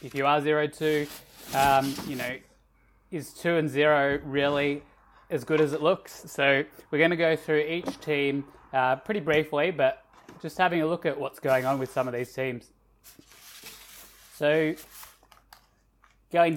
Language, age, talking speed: English, 20-39, 150 wpm